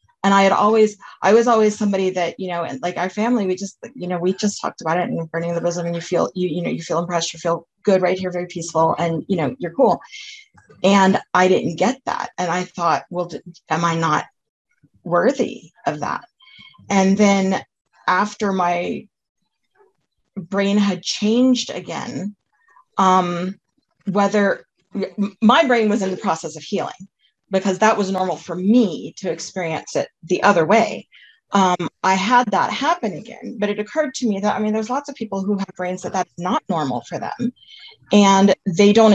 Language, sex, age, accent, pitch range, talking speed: English, female, 40-59, American, 175-210 Hz, 190 wpm